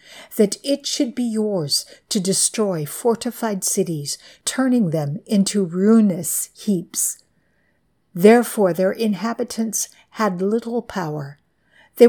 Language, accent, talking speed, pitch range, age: English, American, 105 wpm, 175-230 Hz, 60-79